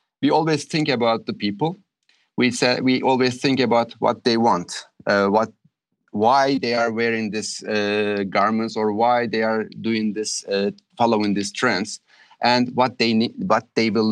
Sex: male